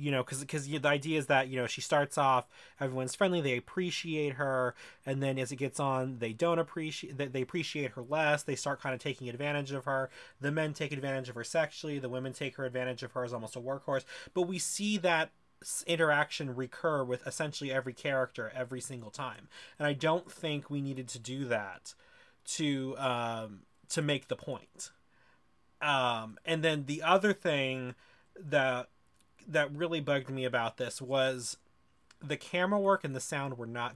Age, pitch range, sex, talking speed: 30-49, 130-155 Hz, male, 190 wpm